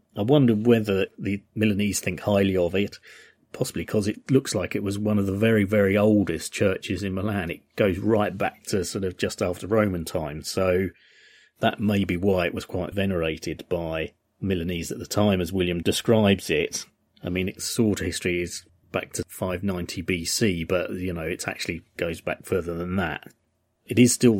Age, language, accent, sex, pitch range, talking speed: 30-49, English, British, male, 85-100 Hz, 190 wpm